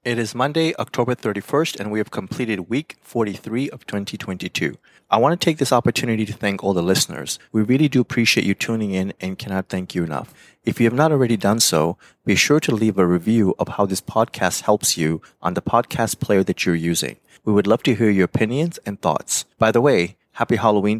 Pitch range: 95-115 Hz